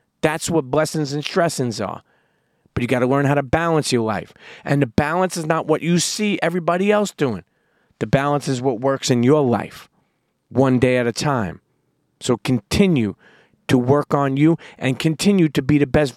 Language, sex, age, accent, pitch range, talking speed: English, male, 40-59, American, 135-170 Hz, 195 wpm